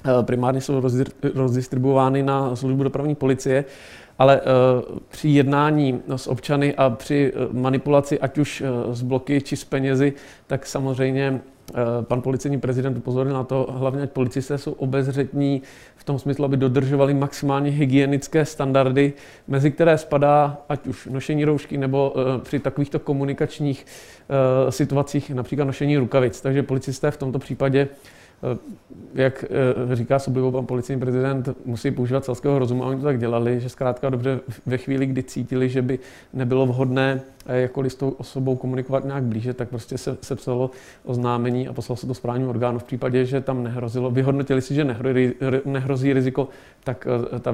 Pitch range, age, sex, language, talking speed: 125-140 Hz, 40-59, male, Czech, 155 wpm